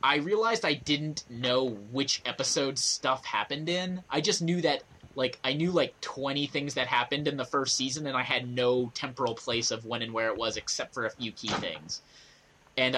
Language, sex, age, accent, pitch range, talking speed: English, male, 20-39, American, 125-160 Hz, 210 wpm